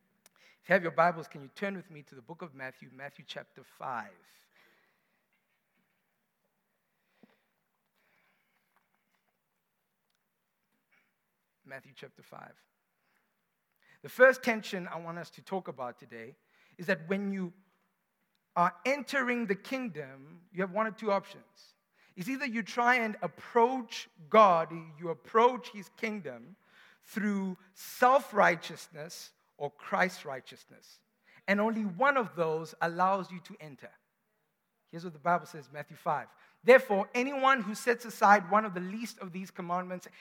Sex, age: male, 50-69